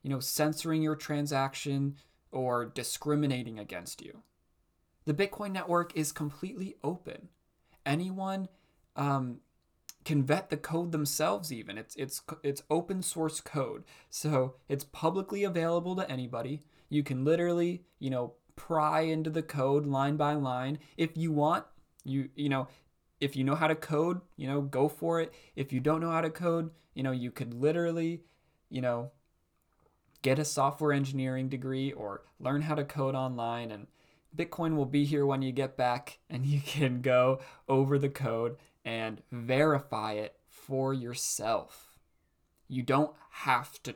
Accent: American